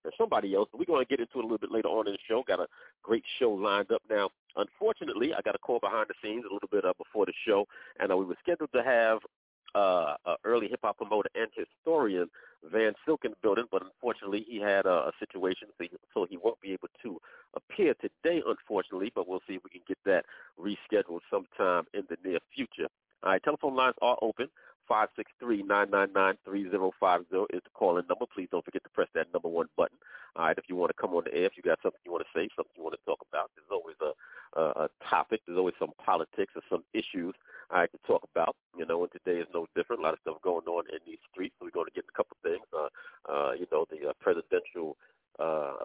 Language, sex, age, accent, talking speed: English, male, 40-59, American, 245 wpm